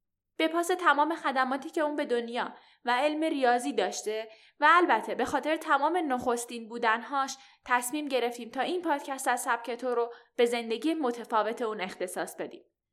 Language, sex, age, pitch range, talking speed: Persian, female, 10-29, 225-285 Hz, 155 wpm